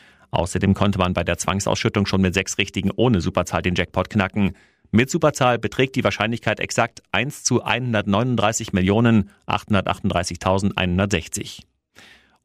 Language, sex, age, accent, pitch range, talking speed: German, male, 40-59, German, 95-115 Hz, 115 wpm